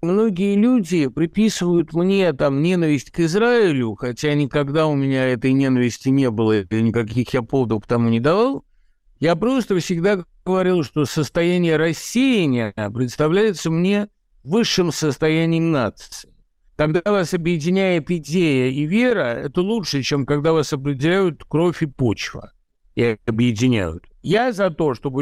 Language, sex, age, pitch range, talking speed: Russian, male, 60-79, 140-185 Hz, 130 wpm